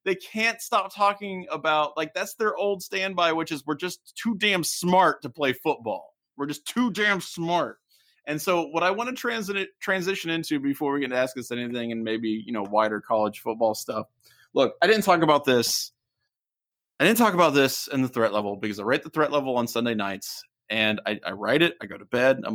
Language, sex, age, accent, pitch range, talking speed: English, male, 30-49, American, 110-160 Hz, 225 wpm